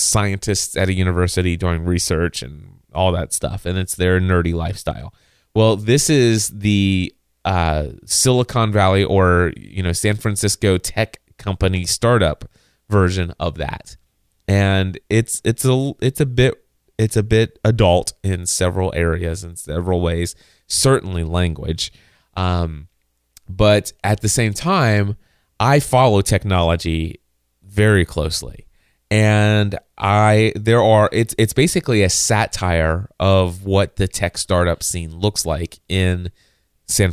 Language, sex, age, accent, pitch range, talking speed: English, male, 30-49, American, 90-110 Hz, 135 wpm